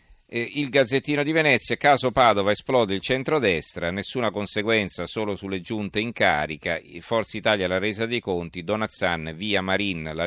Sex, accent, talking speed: male, native, 150 wpm